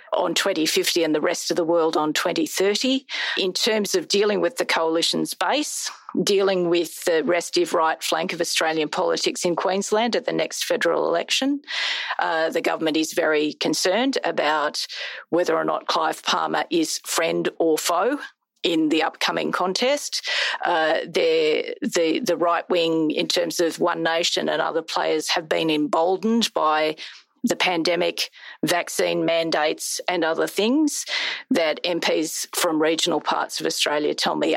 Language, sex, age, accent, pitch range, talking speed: English, female, 40-59, Australian, 165-230 Hz, 150 wpm